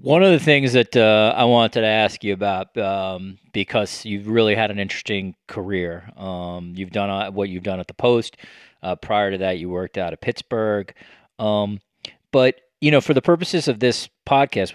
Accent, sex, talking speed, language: American, male, 195 wpm, English